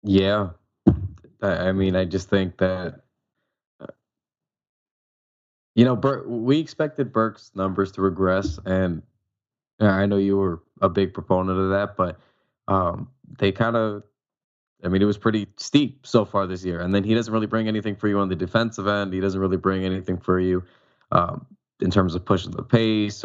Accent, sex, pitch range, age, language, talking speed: American, male, 95-110 Hz, 20-39, English, 175 wpm